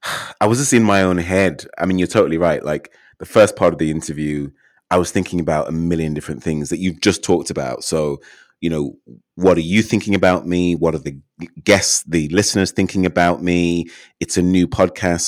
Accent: British